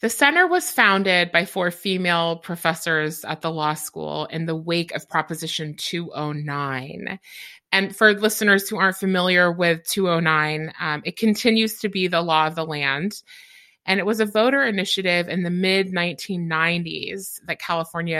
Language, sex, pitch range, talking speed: English, female, 155-195 Hz, 155 wpm